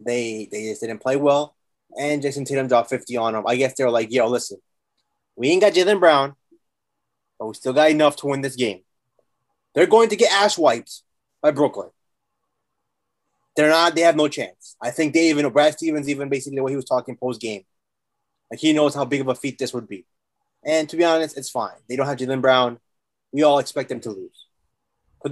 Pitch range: 125-160 Hz